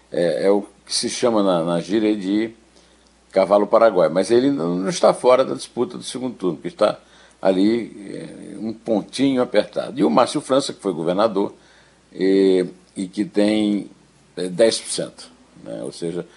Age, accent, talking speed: 60-79, Brazilian, 165 wpm